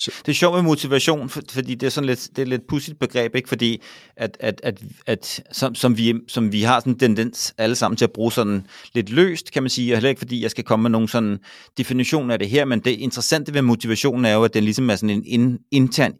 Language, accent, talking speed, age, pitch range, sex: Danish, native, 250 wpm, 30-49, 110-130 Hz, male